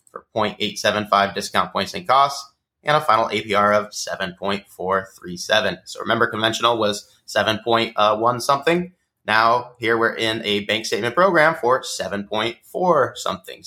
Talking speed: 125 wpm